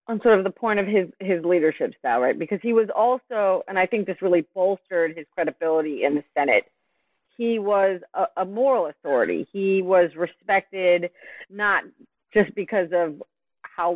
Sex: female